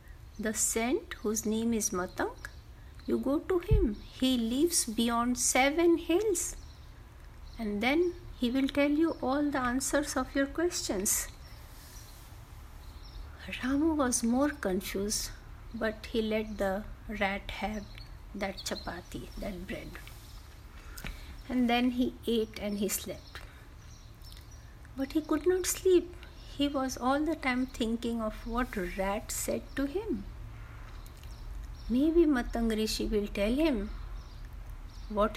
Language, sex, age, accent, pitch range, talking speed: Hindi, female, 50-69, native, 215-280 Hz, 120 wpm